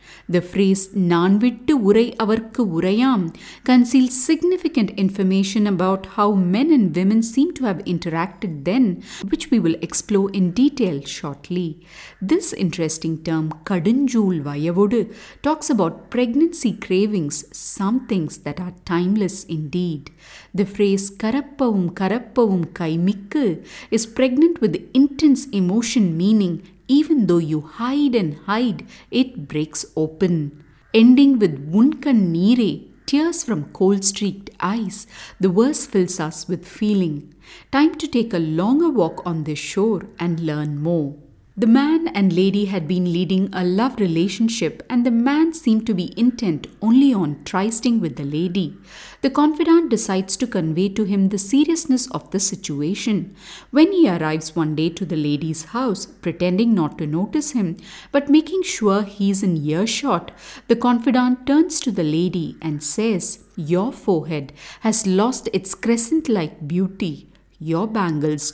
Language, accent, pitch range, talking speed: English, Indian, 175-245 Hz, 140 wpm